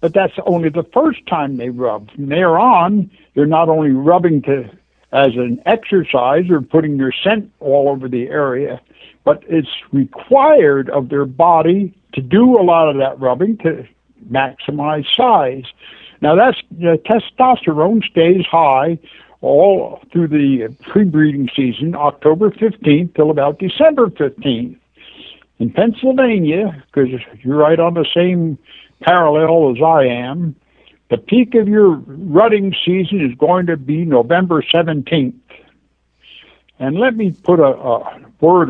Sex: male